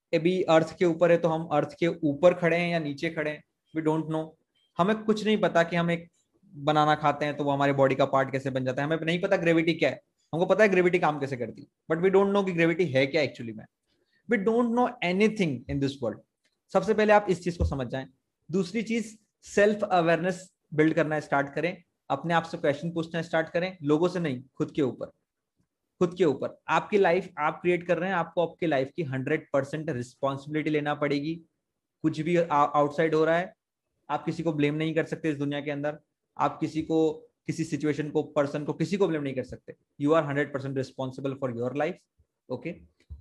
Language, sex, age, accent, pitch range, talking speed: Hindi, male, 20-39, native, 150-175 Hz, 215 wpm